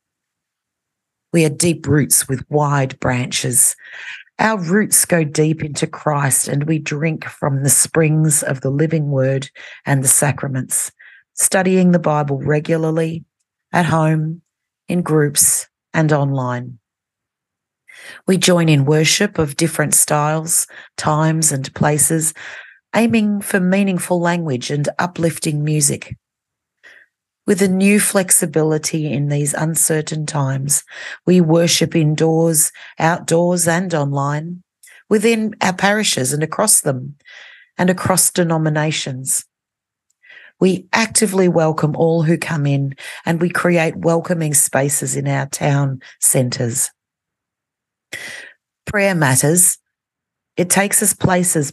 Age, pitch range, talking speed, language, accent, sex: 40-59, 145-180 Hz, 115 wpm, English, Australian, female